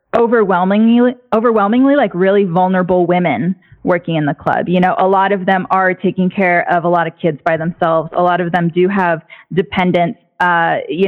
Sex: female